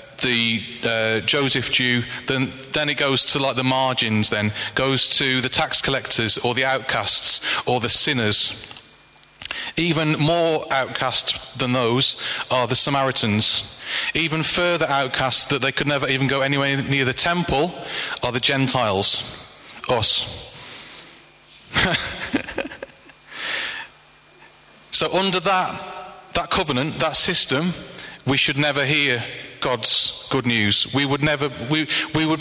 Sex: male